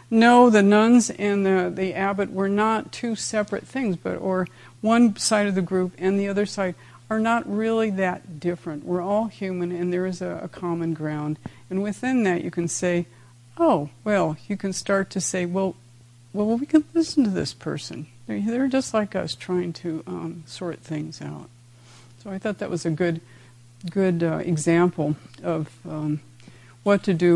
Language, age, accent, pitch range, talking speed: English, 50-69, American, 125-200 Hz, 185 wpm